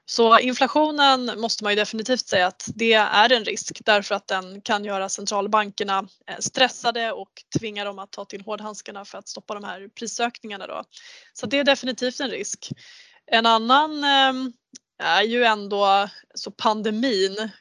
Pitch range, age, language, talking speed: 200-245 Hz, 20-39, Swedish, 150 wpm